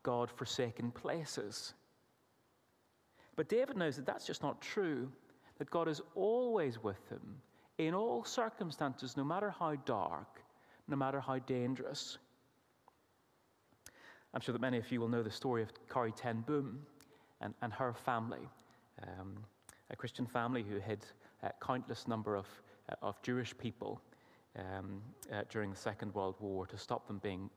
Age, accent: 30-49, British